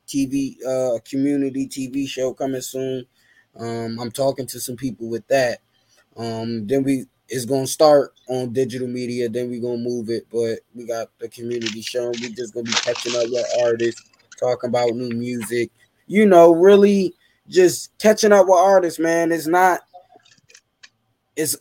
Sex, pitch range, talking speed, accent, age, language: male, 120-150 Hz, 165 wpm, American, 20-39, English